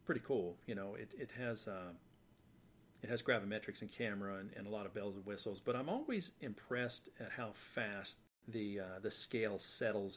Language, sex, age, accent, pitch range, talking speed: English, male, 40-59, American, 95-110 Hz, 195 wpm